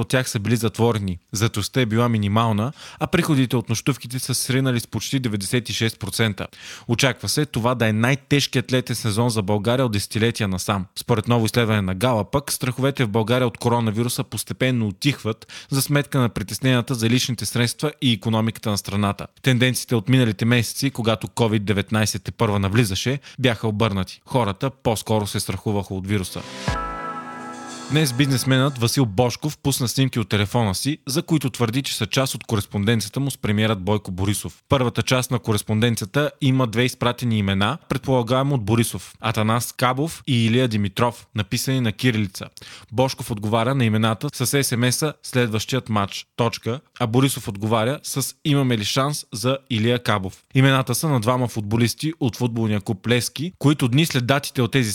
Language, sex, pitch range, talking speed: Bulgarian, male, 110-130 Hz, 155 wpm